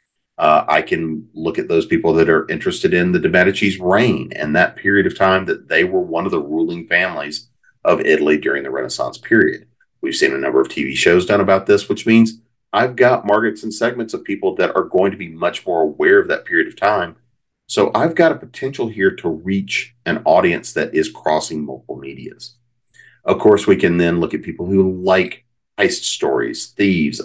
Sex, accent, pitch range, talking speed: male, American, 90-125 Hz, 205 wpm